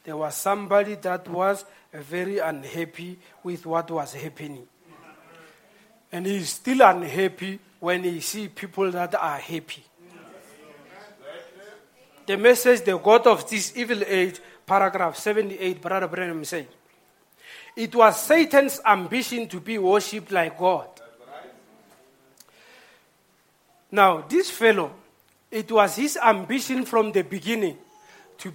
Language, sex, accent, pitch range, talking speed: English, male, South African, 180-235 Hz, 120 wpm